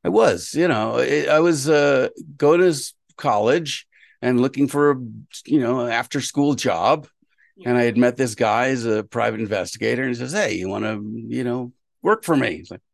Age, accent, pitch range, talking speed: 50-69, American, 105-135 Hz, 195 wpm